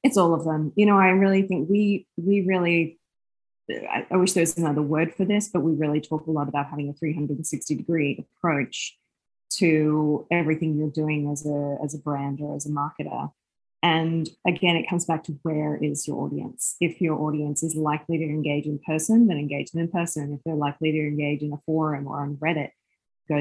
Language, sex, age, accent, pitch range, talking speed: English, female, 20-39, Australian, 150-170 Hz, 205 wpm